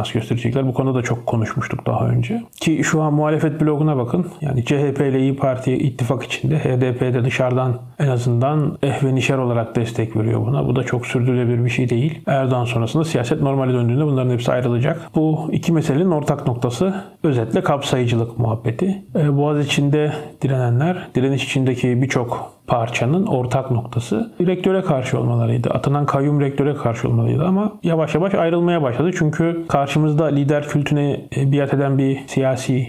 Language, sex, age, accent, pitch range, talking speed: Turkish, male, 40-59, native, 125-155 Hz, 155 wpm